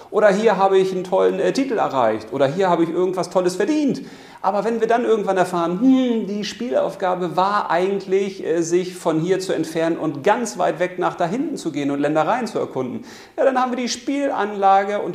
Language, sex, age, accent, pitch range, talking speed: German, male, 40-59, German, 140-205 Hz, 205 wpm